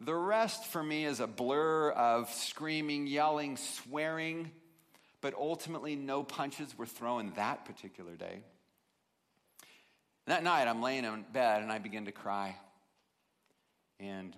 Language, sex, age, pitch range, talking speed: English, male, 50-69, 110-155 Hz, 135 wpm